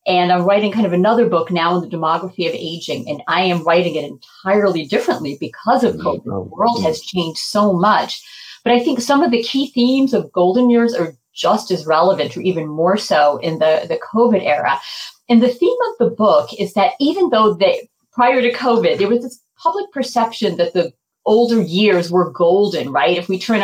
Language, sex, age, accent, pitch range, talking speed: English, female, 40-59, American, 175-235 Hz, 210 wpm